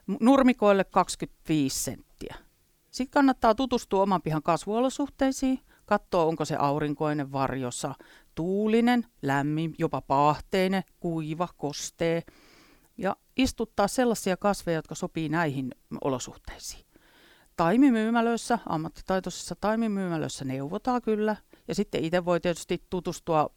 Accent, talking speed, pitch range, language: native, 100 wpm, 150-210 Hz, Finnish